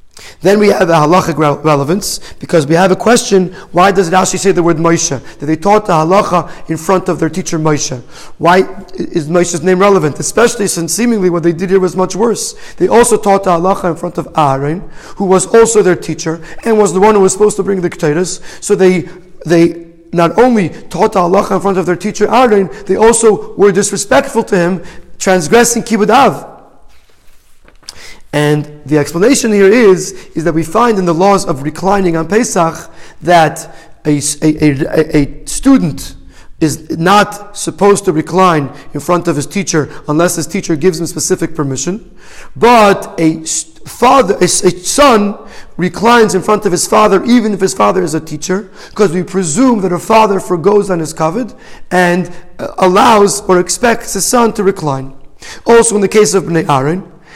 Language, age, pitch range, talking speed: English, 30-49, 165-205 Hz, 180 wpm